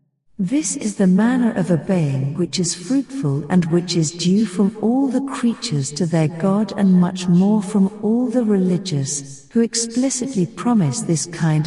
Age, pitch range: 50-69, 155-215 Hz